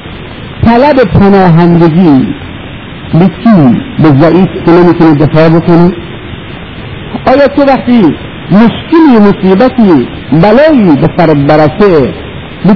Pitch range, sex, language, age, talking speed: 170-245 Hz, male, Persian, 50-69, 80 wpm